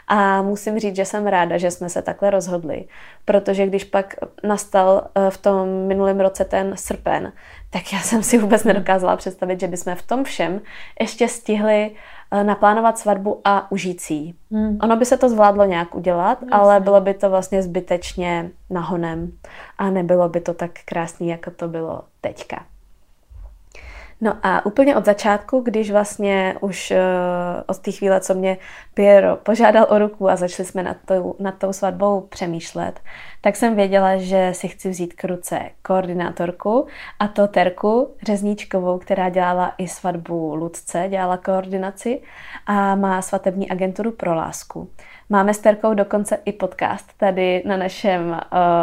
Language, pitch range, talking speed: Czech, 185-215 Hz, 155 wpm